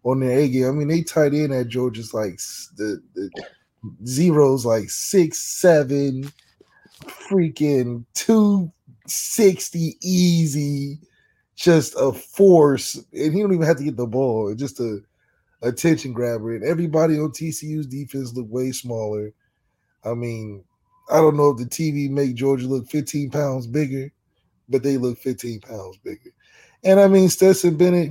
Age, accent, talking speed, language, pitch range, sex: 20-39, American, 155 wpm, English, 125-150 Hz, male